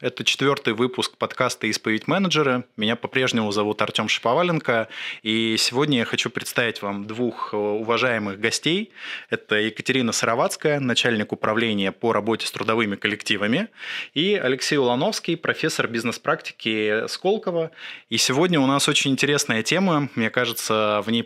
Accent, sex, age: native, male, 20-39